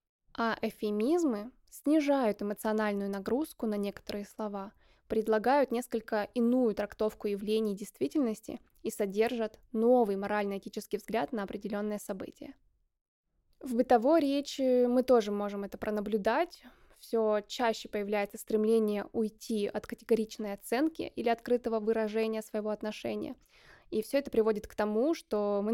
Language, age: Russian, 20-39